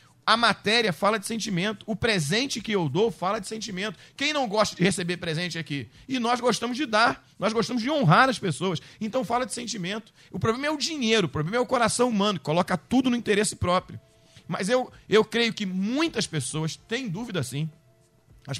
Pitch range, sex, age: 175-245 Hz, male, 40-59